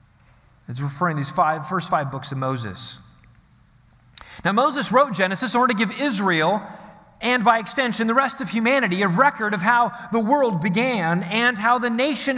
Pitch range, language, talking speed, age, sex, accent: 175-255 Hz, English, 180 wpm, 30-49, male, American